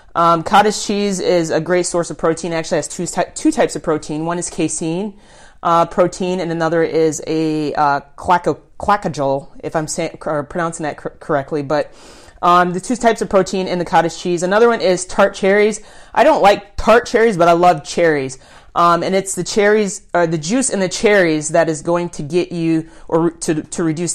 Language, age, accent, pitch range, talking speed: English, 30-49, American, 160-190 Hz, 205 wpm